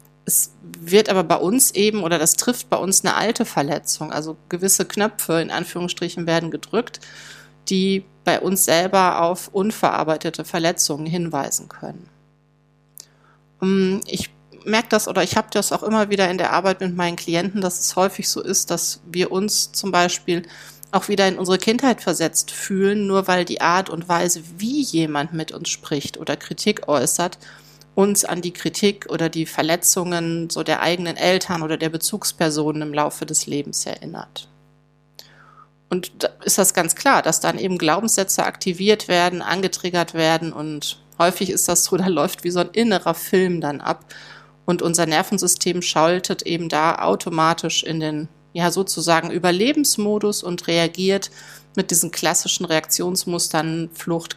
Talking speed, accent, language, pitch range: 160 wpm, German, German, 160-190 Hz